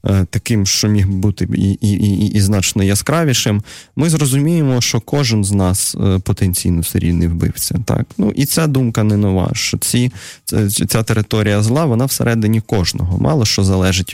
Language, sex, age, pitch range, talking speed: Russian, male, 20-39, 95-115 Hz, 160 wpm